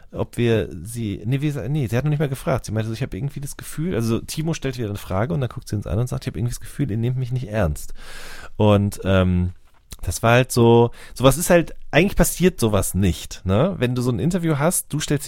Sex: male